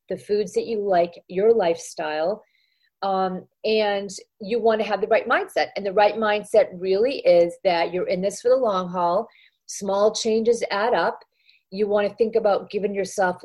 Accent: American